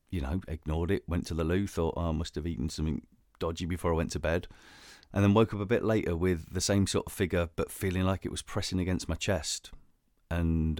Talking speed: 245 wpm